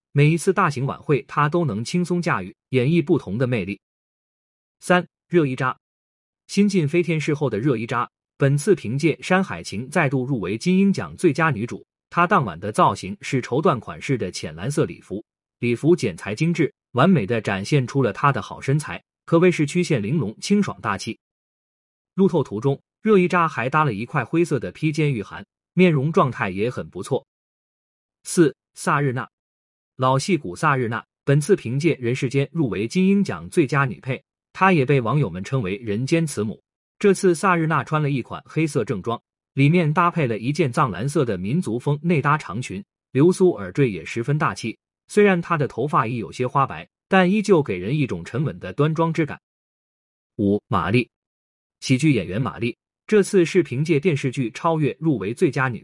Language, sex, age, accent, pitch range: Chinese, male, 30-49, native, 120-175 Hz